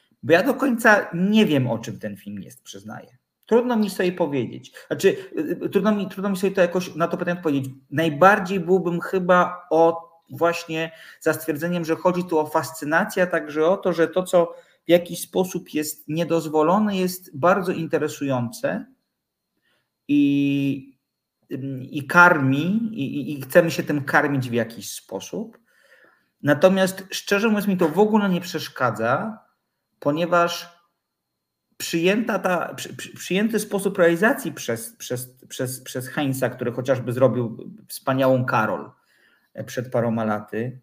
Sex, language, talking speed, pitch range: male, Polish, 140 wpm, 125-180 Hz